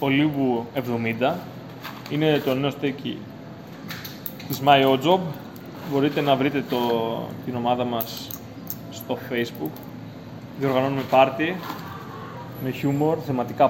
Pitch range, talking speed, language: 125-145 Hz, 100 wpm, Greek